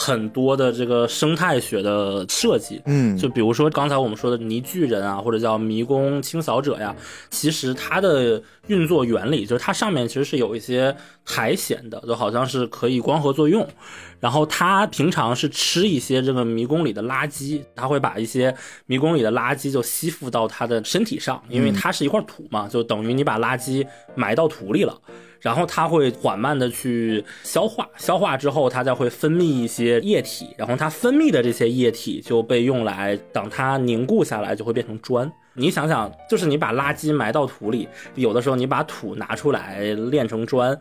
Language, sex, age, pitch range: Chinese, male, 20-39, 115-150 Hz